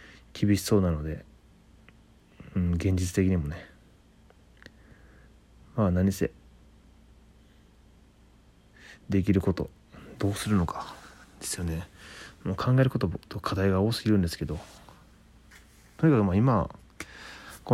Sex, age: male, 30-49